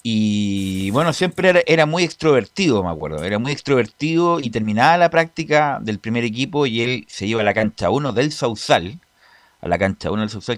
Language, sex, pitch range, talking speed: Spanish, male, 90-135 Hz, 200 wpm